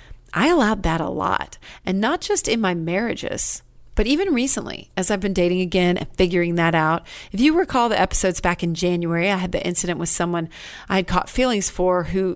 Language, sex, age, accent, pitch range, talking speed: English, female, 40-59, American, 175-225 Hz, 210 wpm